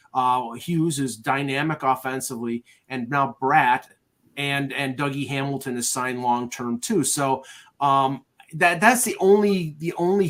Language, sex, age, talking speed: English, male, 30-49, 145 wpm